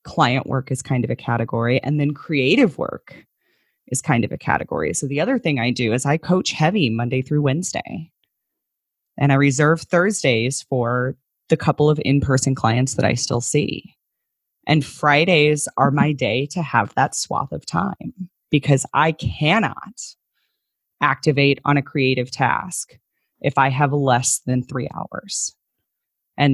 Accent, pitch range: American, 130-155 Hz